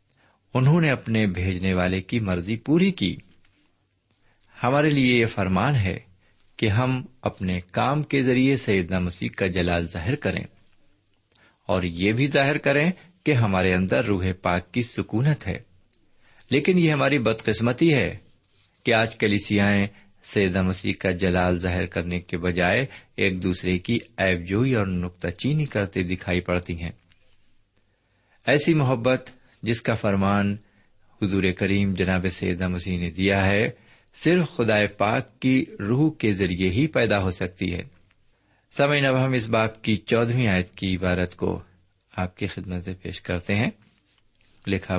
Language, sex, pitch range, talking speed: Urdu, male, 95-125 Hz, 145 wpm